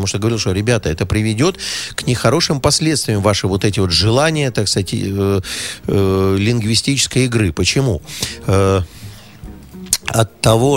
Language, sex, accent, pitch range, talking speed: Russian, male, native, 95-125 Hz, 135 wpm